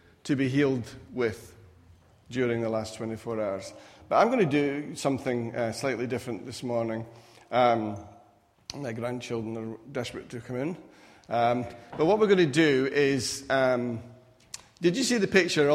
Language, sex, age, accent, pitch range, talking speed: English, male, 40-59, British, 120-145 Hz, 165 wpm